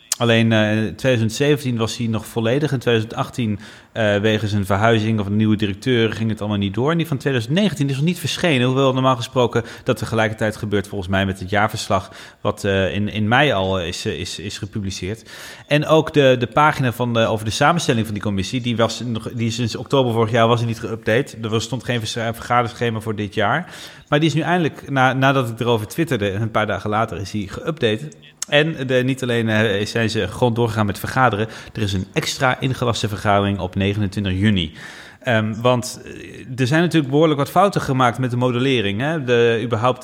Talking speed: 200 wpm